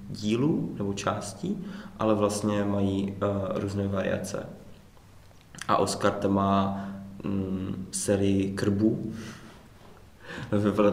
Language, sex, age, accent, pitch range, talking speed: Czech, male, 20-39, native, 95-105 Hz, 75 wpm